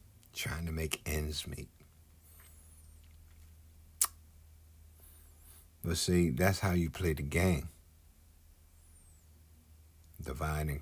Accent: American